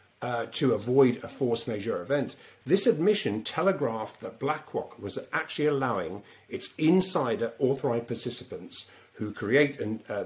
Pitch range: 125-190 Hz